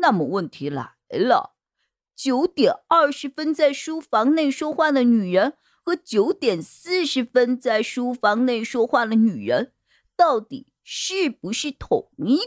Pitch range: 215-310 Hz